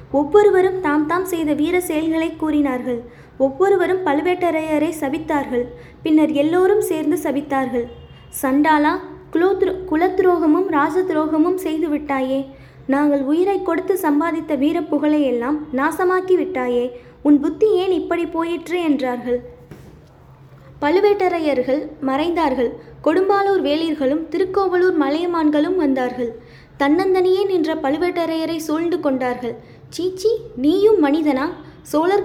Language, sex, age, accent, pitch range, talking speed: Tamil, female, 20-39, native, 285-355 Hz, 90 wpm